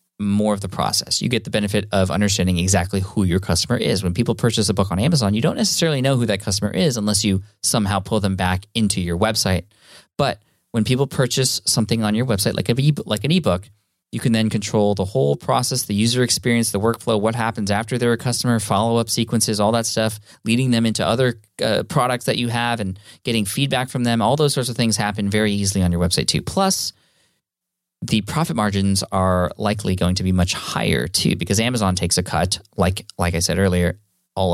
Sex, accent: male, American